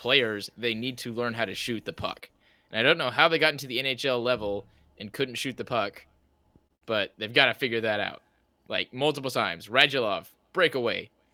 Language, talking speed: English, 200 wpm